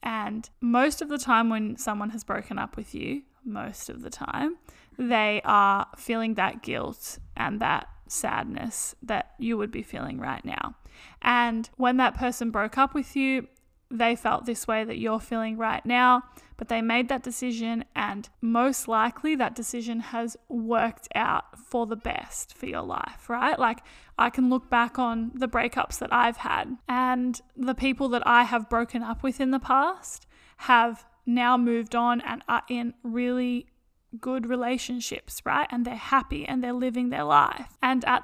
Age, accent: 10-29, Australian